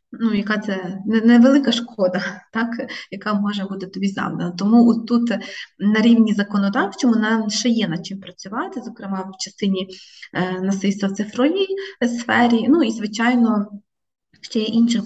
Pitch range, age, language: 195-235 Hz, 20-39, Ukrainian